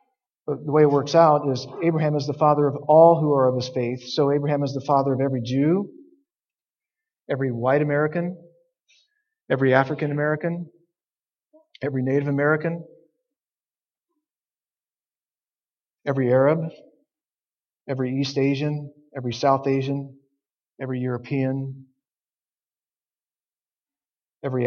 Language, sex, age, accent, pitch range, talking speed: English, male, 40-59, American, 130-155 Hz, 110 wpm